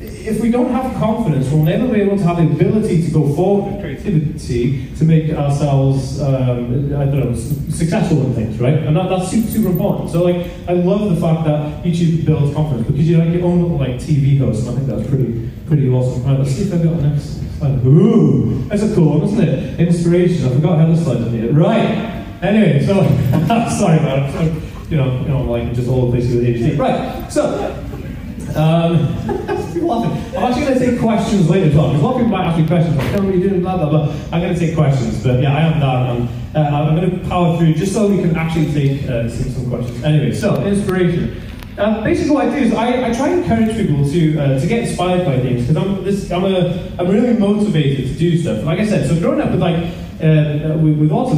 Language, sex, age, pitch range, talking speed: English, male, 30-49, 135-185 Hz, 230 wpm